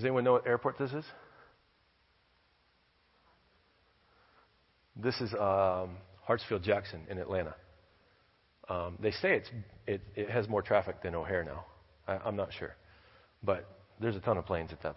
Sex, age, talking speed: male, 40-59, 140 wpm